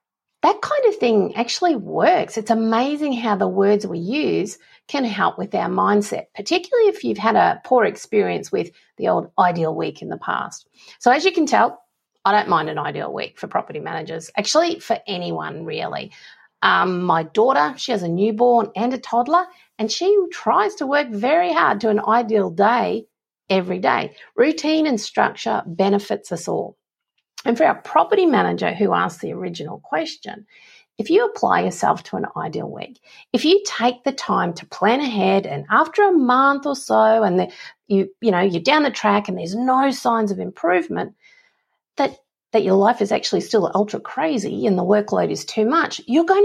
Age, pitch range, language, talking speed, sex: 50-69, 195-310 Hz, English, 185 wpm, female